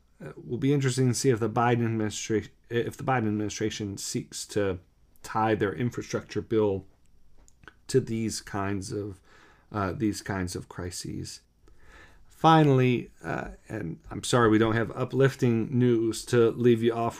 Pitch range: 95-120 Hz